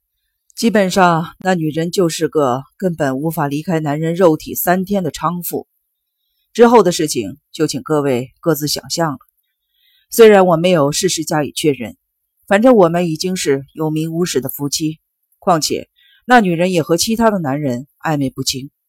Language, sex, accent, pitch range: Chinese, female, native, 150-205 Hz